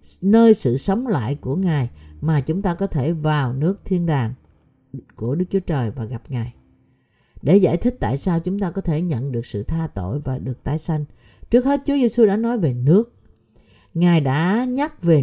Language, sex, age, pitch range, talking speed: Vietnamese, female, 50-69, 135-200 Hz, 205 wpm